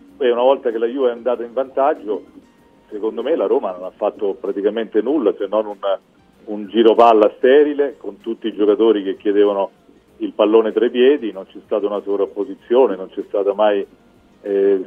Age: 40-59